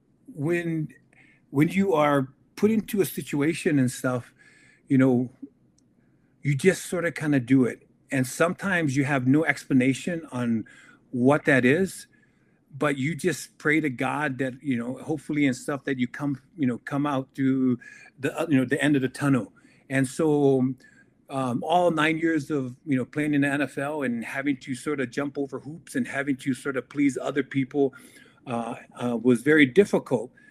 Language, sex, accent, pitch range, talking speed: English, male, American, 130-150 Hz, 180 wpm